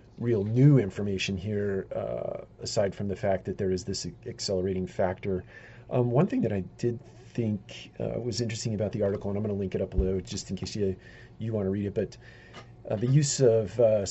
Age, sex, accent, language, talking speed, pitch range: 40-59, male, American, English, 215 wpm, 95-110 Hz